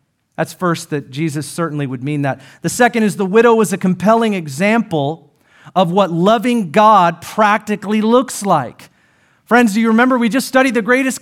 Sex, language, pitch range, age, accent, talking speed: male, English, 145-220 Hz, 40-59, American, 175 wpm